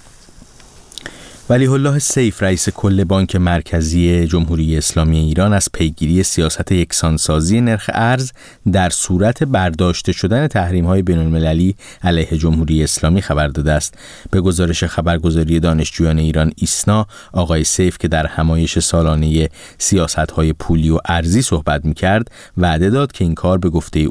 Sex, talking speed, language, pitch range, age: male, 140 wpm, Persian, 80-95 Hz, 30-49